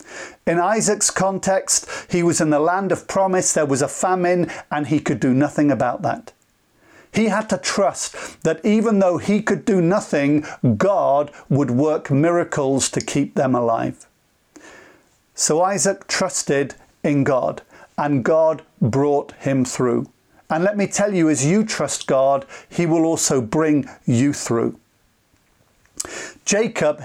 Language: English